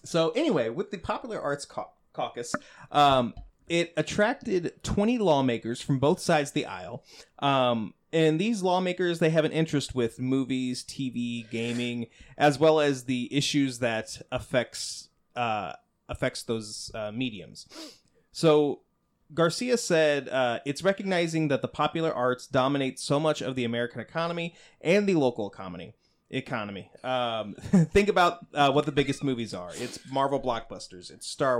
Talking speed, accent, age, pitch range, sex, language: 150 wpm, American, 30-49, 120-160 Hz, male, English